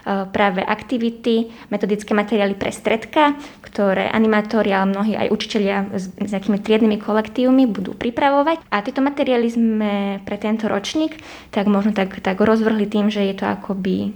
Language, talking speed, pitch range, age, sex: Slovak, 155 wpm, 200-225 Hz, 20-39, female